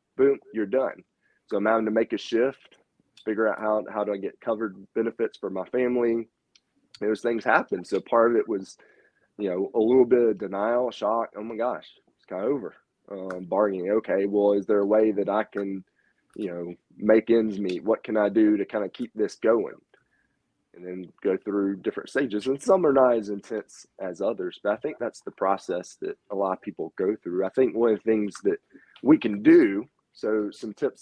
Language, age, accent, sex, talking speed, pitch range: English, 20-39, American, male, 215 wpm, 100-115 Hz